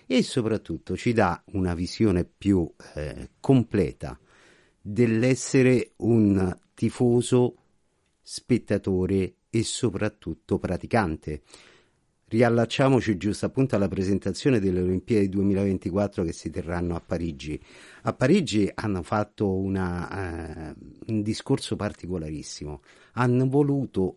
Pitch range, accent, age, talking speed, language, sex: 90-120 Hz, native, 50-69, 95 wpm, Italian, male